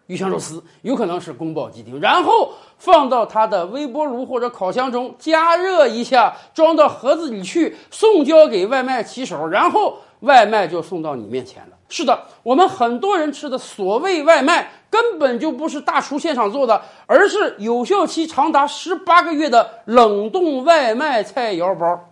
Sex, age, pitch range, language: male, 50-69, 225-335 Hz, Chinese